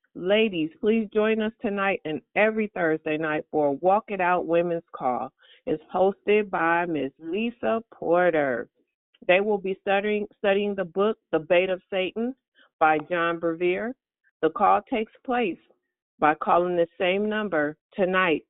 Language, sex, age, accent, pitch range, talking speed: English, female, 50-69, American, 165-215 Hz, 150 wpm